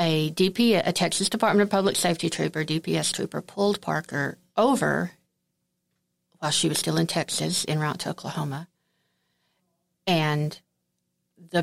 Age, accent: 50-69, American